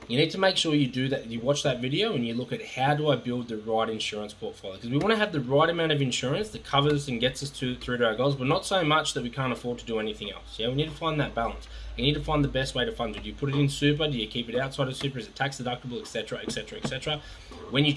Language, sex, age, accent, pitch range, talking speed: English, male, 20-39, Australian, 115-145 Hz, 325 wpm